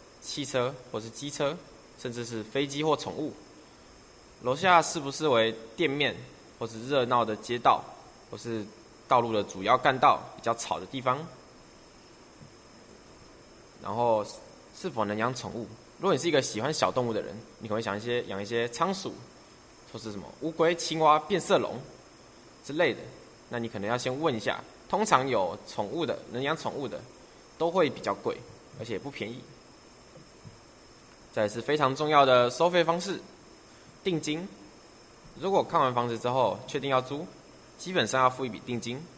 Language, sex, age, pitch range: Chinese, male, 20-39, 115-150 Hz